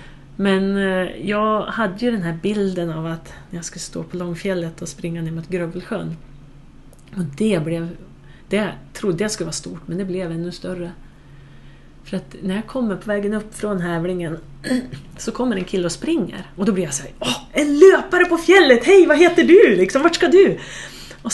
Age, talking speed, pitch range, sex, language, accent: 30-49, 190 wpm, 165-210 Hz, female, English, Swedish